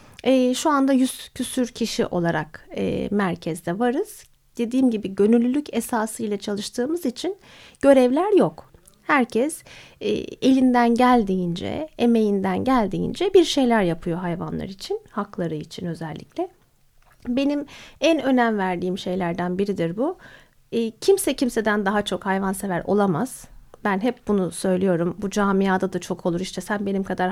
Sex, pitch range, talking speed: female, 185-250 Hz, 120 wpm